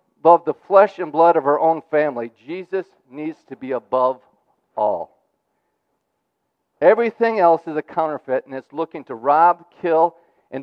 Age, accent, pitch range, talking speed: 50-69, American, 170-220 Hz, 150 wpm